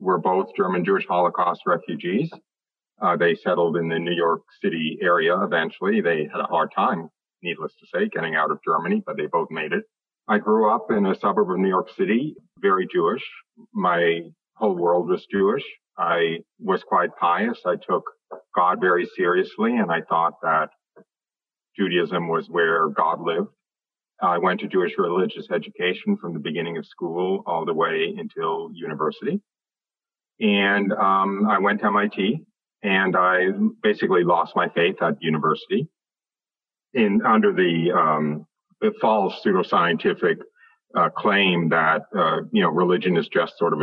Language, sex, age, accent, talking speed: English, male, 50-69, American, 160 wpm